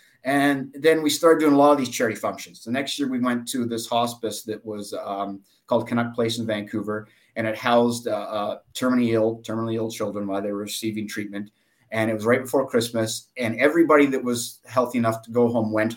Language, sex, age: English, male, 30-49